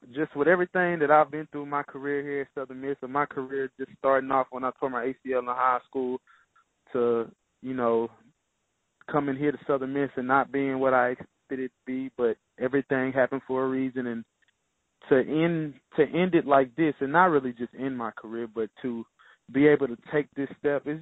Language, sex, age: English, male, 20-39